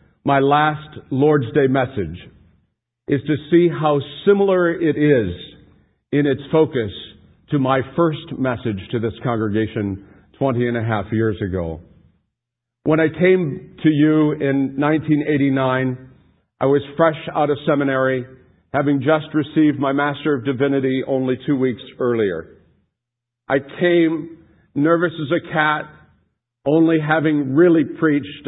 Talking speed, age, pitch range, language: 130 wpm, 50-69, 120-150 Hz, English